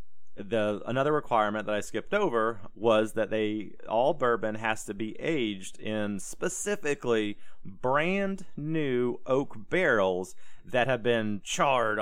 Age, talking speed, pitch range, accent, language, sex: 30-49, 130 wpm, 105-140 Hz, American, English, male